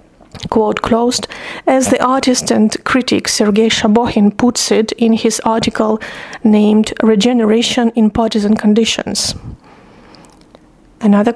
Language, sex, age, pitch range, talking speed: English, female, 30-49, 220-255 Hz, 105 wpm